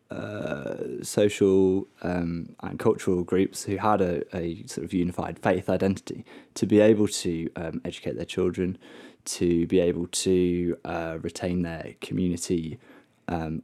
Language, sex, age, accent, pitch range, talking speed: English, male, 20-39, British, 85-100 Hz, 140 wpm